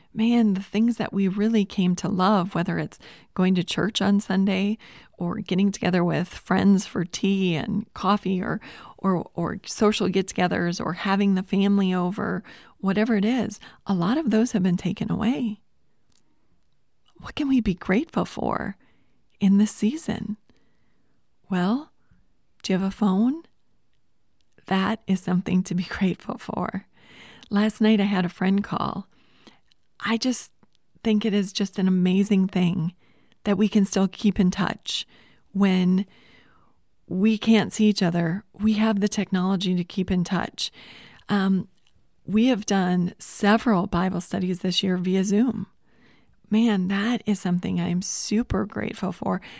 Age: 30-49